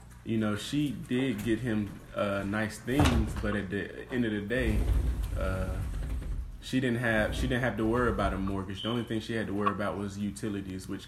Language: English